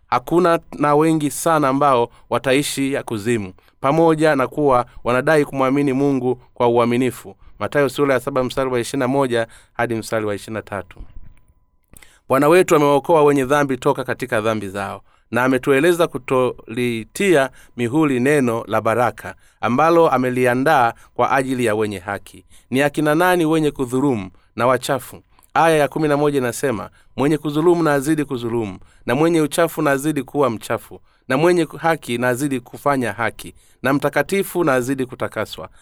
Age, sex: 30-49, male